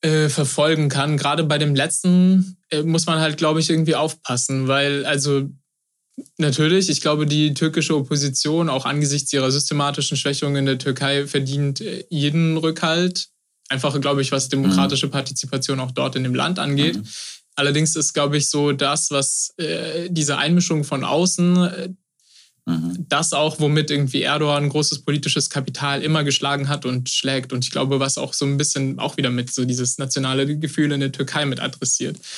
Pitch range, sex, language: 135-150 Hz, male, German